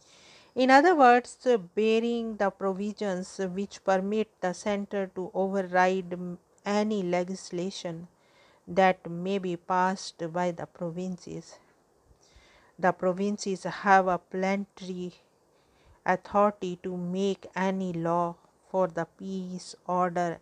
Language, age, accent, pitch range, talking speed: English, 50-69, Indian, 175-200 Hz, 105 wpm